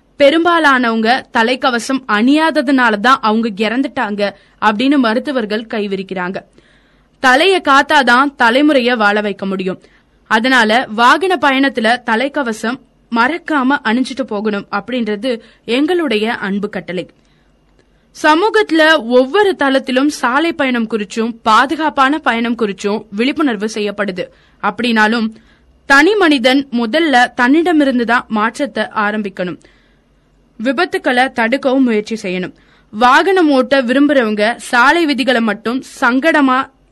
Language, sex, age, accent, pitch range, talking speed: Tamil, female, 20-39, native, 220-280 Hz, 75 wpm